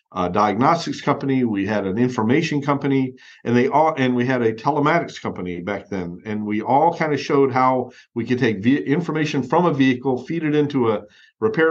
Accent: American